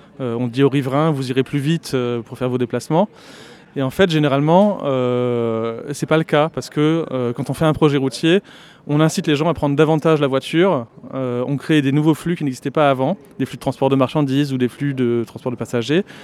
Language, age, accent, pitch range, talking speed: French, 20-39, French, 130-155 Hz, 225 wpm